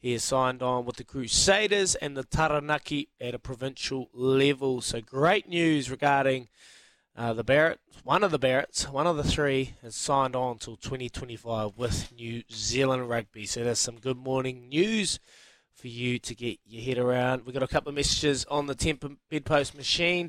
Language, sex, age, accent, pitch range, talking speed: English, male, 20-39, Australian, 120-155 Hz, 185 wpm